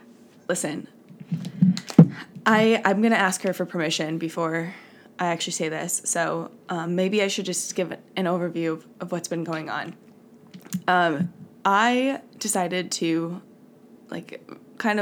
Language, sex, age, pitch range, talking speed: English, female, 20-39, 175-220 Hz, 140 wpm